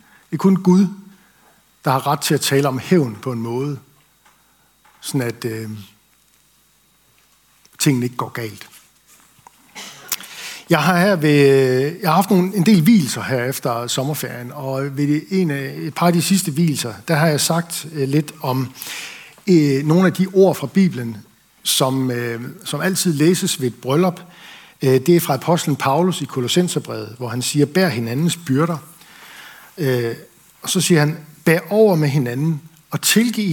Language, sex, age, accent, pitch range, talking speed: Danish, male, 60-79, native, 130-170 Hz, 145 wpm